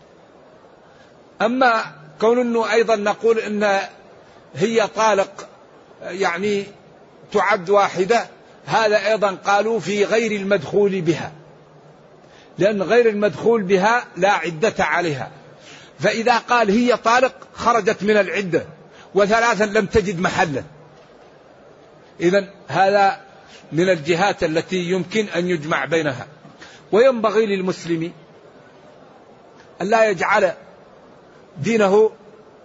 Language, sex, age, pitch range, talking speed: Arabic, male, 60-79, 180-215 Hz, 95 wpm